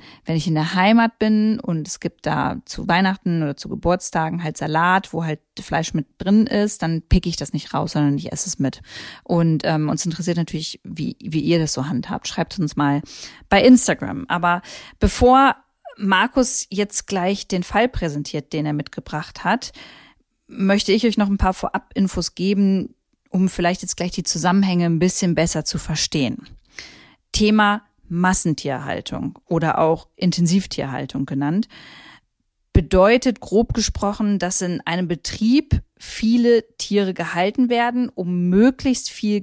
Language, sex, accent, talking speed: German, female, German, 155 wpm